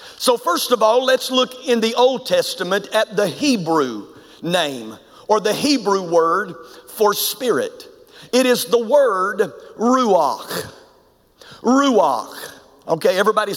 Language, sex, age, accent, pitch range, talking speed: English, male, 50-69, American, 205-290 Hz, 125 wpm